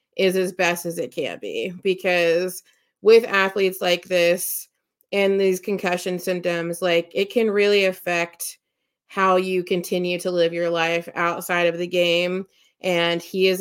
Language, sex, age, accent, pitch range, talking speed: English, female, 30-49, American, 170-185 Hz, 155 wpm